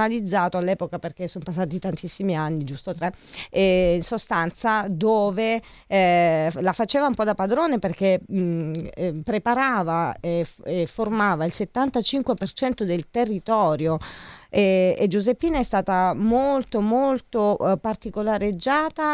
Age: 40-59